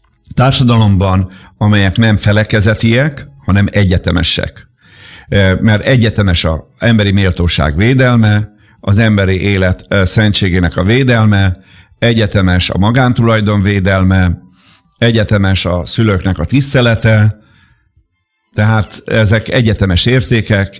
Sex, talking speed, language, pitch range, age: male, 90 wpm, Hungarian, 95-115 Hz, 50-69